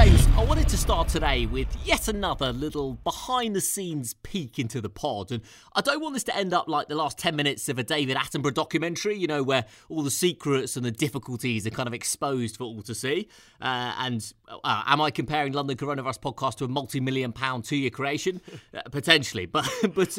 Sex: male